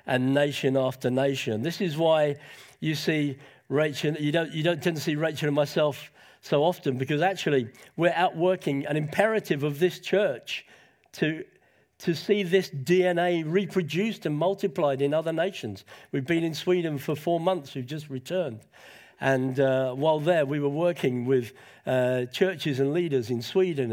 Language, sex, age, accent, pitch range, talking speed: English, male, 50-69, British, 140-180 Hz, 165 wpm